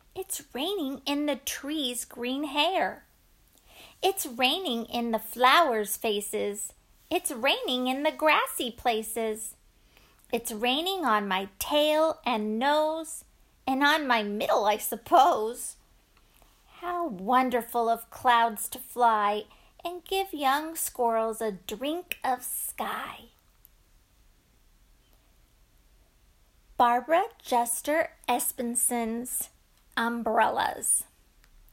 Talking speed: 95 wpm